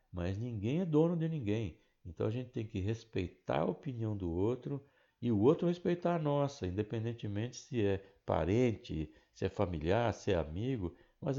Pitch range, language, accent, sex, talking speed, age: 95-130 Hz, Portuguese, Brazilian, male, 175 wpm, 60-79